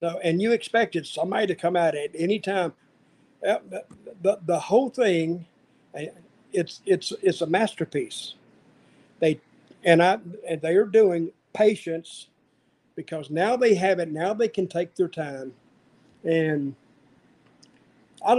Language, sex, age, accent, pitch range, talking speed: English, male, 50-69, American, 160-195 Hz, 135 wpm